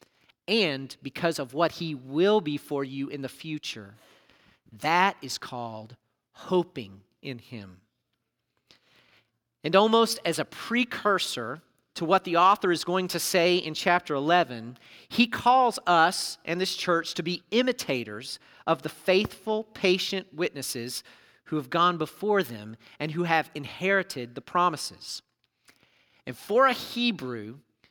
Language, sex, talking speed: English, male, 135 wpm